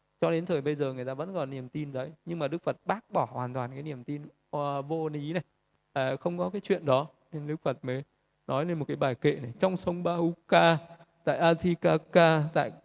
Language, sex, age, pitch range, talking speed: Vietnamese, male, 20-39, 140-160 Hz, 230 wpm